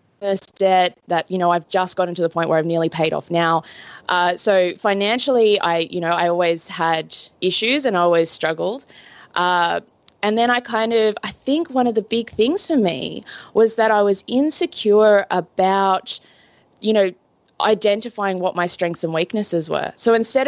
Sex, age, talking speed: female, 20-39, 185 wpm